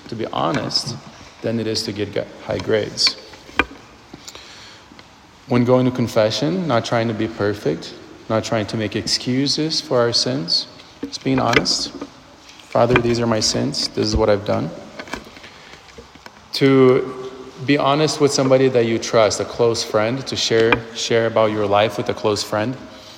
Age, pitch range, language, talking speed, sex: 30-49, 110-125 Hz, English, 160 wpm, male